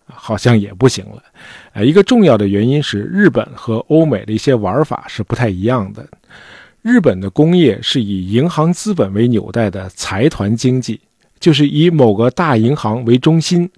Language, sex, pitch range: Chinese, male, 105-160 Hz